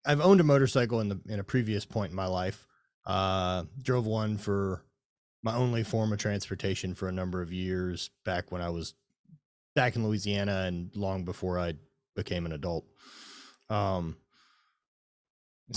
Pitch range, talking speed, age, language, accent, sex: 95-125 Hz, 160 wpm, 30-49, English, American, male